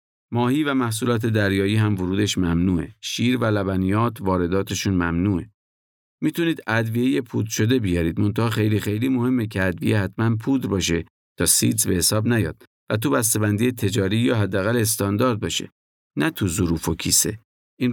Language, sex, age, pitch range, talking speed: Persian, male, 50-69, 95-120 Hz, 150 wpm